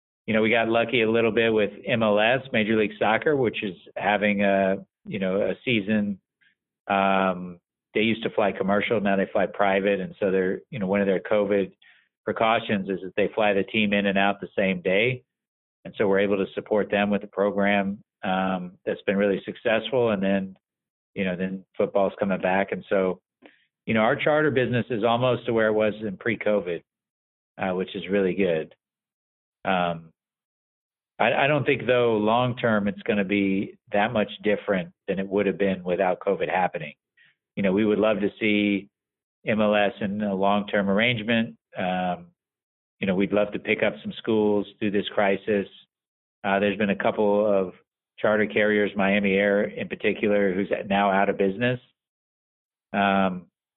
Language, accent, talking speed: English, American, 180 wpm